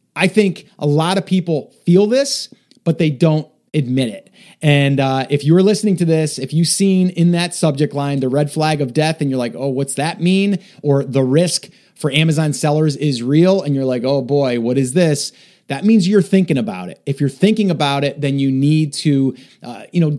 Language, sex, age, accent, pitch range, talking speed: English, male, 30-49, American, 140-185 Hz, 215 wpm